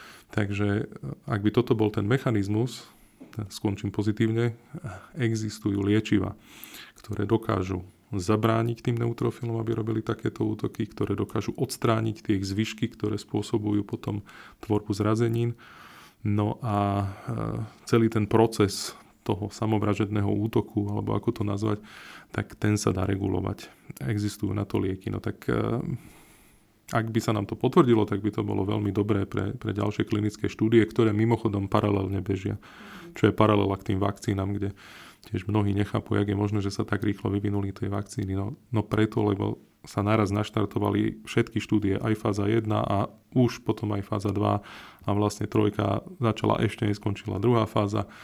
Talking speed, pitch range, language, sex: 150 wpm, 100-115 Hz, Slovak, male